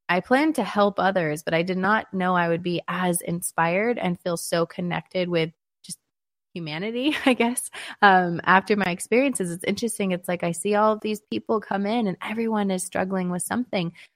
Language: English